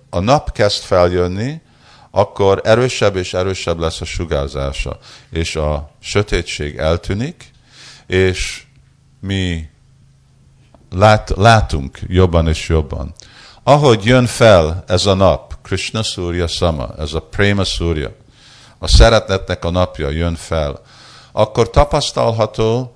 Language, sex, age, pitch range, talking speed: Hungarian, male, 50-69, 90-120 Hz, 110 wpm